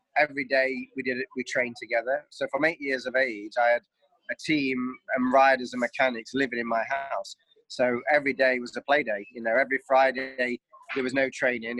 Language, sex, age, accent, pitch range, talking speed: English, male, 20-39, British, 120-140 Hz, 210 wpm